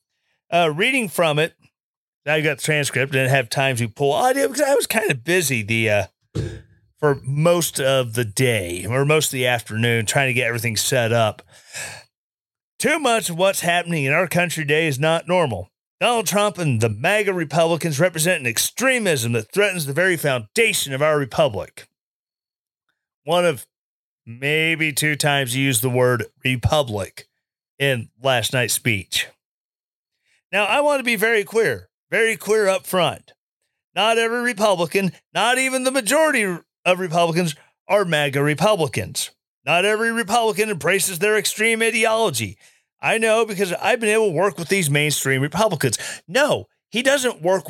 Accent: American